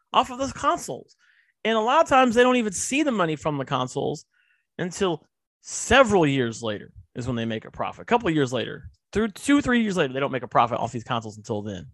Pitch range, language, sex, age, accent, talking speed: 125-205 Hz, English, male, 30-49, American, 240 wpm